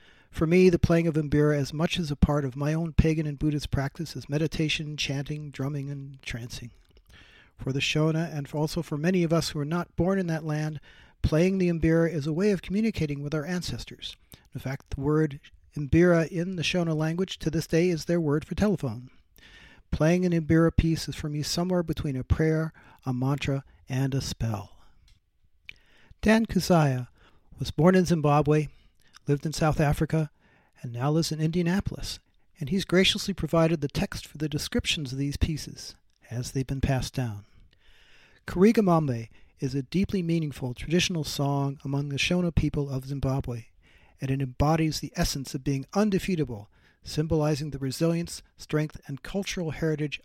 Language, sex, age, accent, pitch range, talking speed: English, male, 50-69, American, 135-165 Hz, 175 wpm